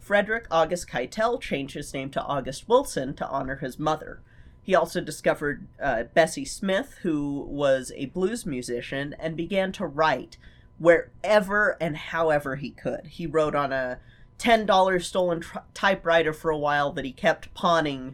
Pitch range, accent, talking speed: 135-170 Hz, American, 155 wpm